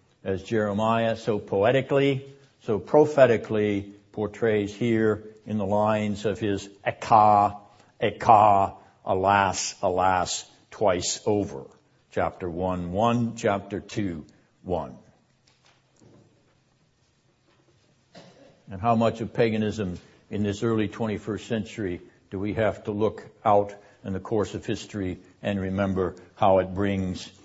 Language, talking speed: English, 110 wpm